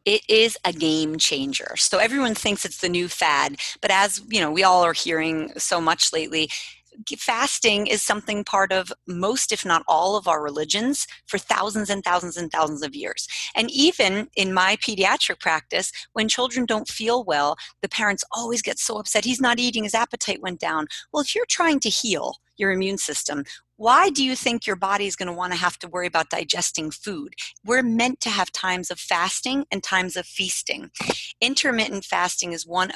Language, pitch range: English, 175-235 Hz